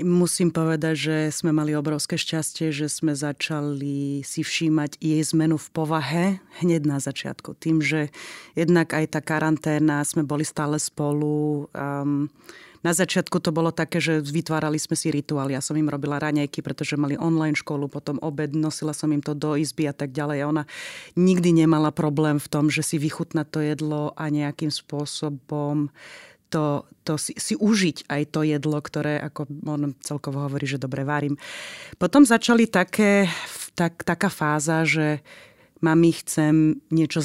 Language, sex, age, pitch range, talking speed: Slovak, female, 30-49, 150-170 Hz, 165 wpm